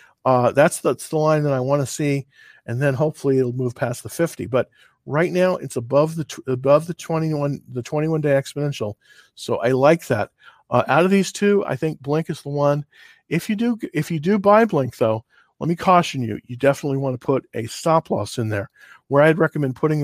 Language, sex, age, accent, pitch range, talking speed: English, male, 50-69, American, 125-155 Hz, 220 wpm